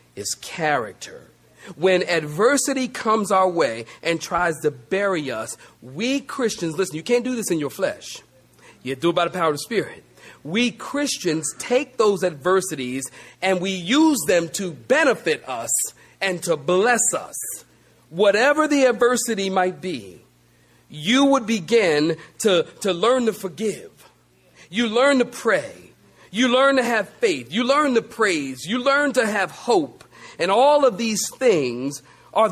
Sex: male